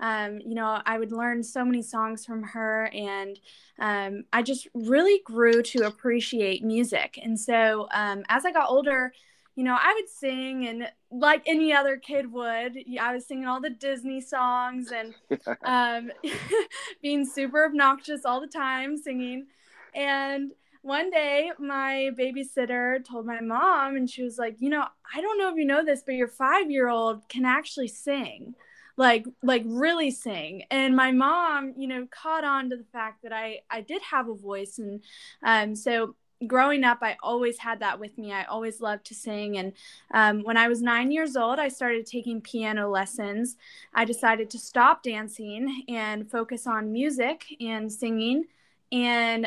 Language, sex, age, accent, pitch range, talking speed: English, female, 20-39, American, 225-275 Hz, 175 wpm